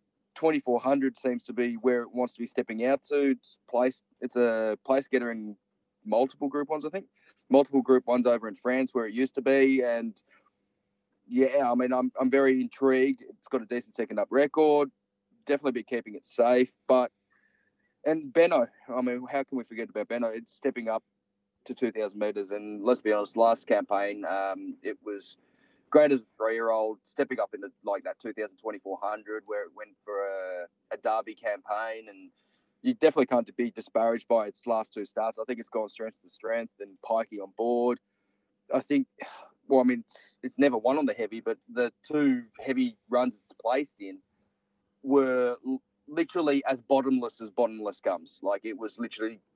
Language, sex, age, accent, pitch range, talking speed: English, male, 20-39, Australian, 110-135 Hz, 190 wpm